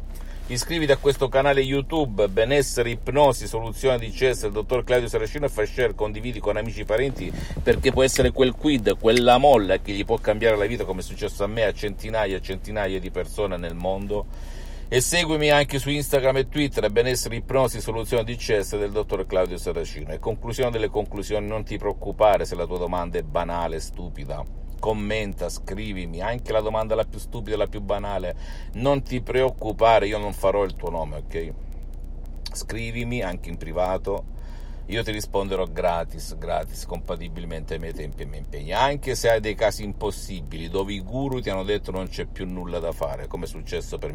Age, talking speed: 50-69, 190 wpm